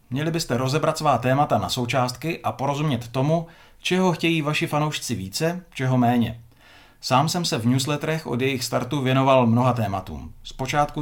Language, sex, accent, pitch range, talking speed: Czech, male, native, 120-150 Hz, 160 wpm